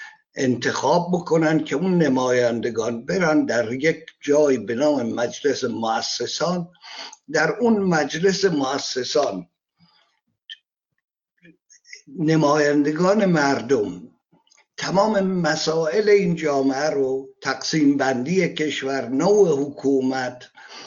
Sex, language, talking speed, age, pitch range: male, Persian, 85 wpm, 60-79, 145-190 Hz